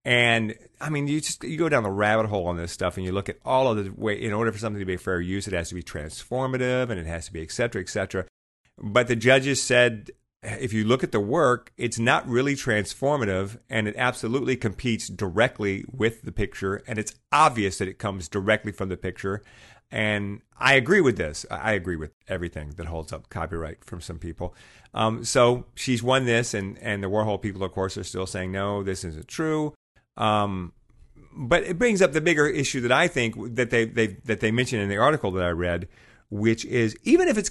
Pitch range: 95-125 Hz